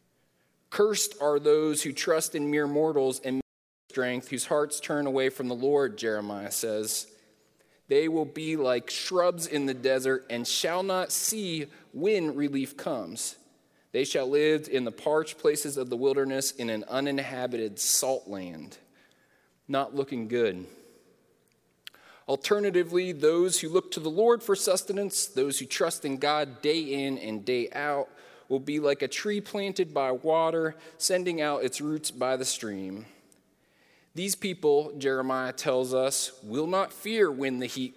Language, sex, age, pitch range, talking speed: English, male, 30-49, 130-165 Hz, 155 wpm